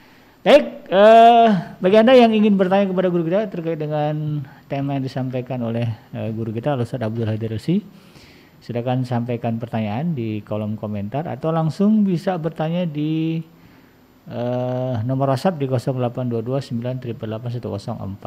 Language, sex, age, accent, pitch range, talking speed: Indonesian, male, 50-69, native, 120-160 Hz, 125 wpm